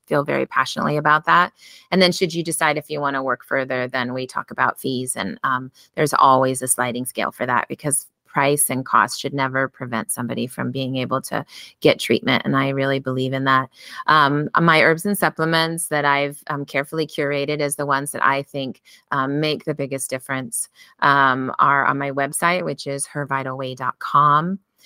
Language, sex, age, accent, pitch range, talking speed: English, female, 30-49, American, 135-155 Hz, 190 wpm